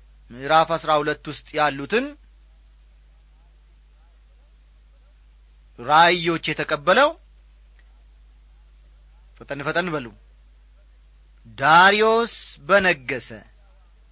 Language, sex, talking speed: Amharic, male, 45 wpm